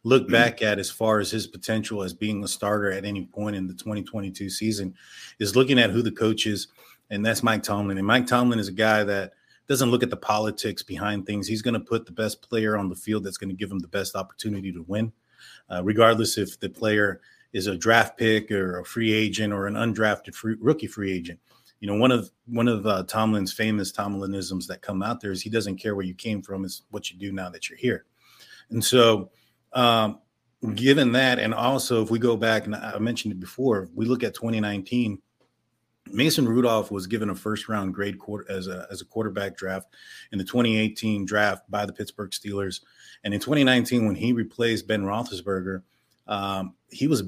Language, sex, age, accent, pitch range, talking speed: English, male, 30-49, American, 100-115 Hz, 210 wpm